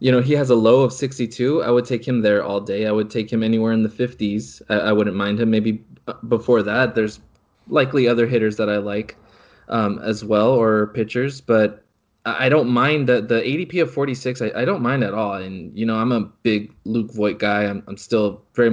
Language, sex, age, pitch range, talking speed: English, male, 20-39, 105-125 Hz, 230 wpm